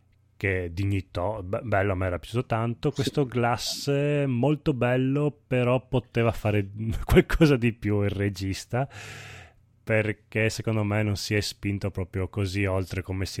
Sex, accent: male, native